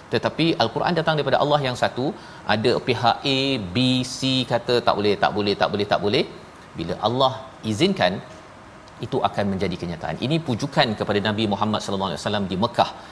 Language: Malayalam